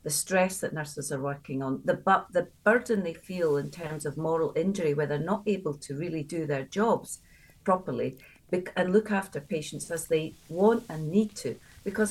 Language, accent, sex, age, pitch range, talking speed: English, British, female, 50-69, 150-205 Hz, 200 wpm